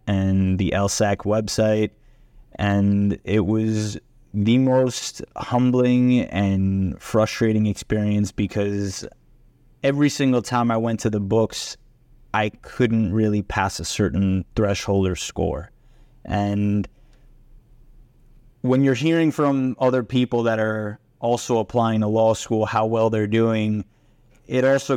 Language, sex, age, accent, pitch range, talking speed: English, male, 20-39, American, 105-120 Hz, 125 wpm